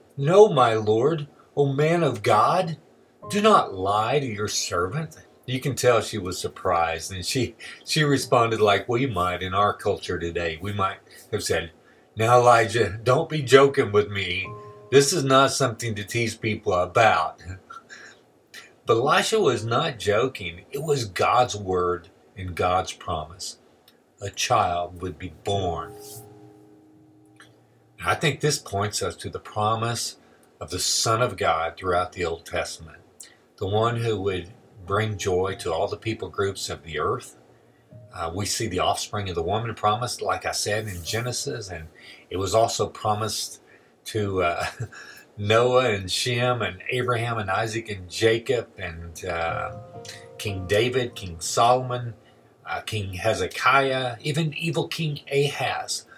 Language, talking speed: English, 150 wpm